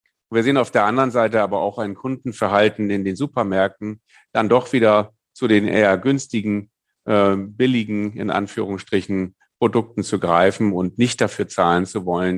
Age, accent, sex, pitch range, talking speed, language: 40-59, German, male, 95-115 Hz, 160 wpm, German